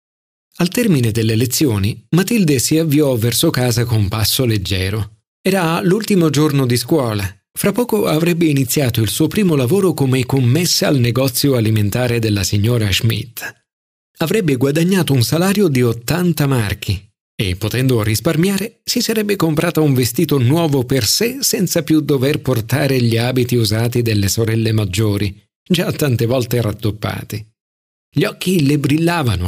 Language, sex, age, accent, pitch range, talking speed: Italian, male, 40-59, native, 110-165 Hz, 140 wpm